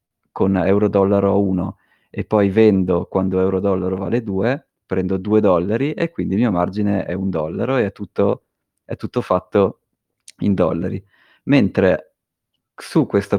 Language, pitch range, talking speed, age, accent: Italian, 95-110 Hz, 140 wpm, 30-49, native